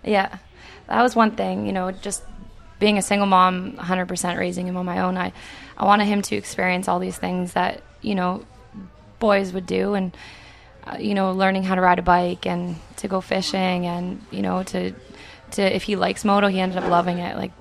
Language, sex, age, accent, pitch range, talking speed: English, female, 20-39, American, 175-195 Hz, 210 wpm